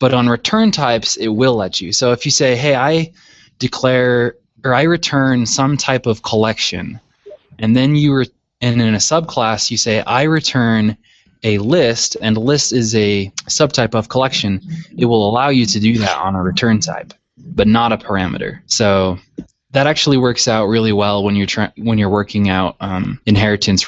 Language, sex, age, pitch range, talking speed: English, male, 20-39, 105-130 Hz, 185 wpm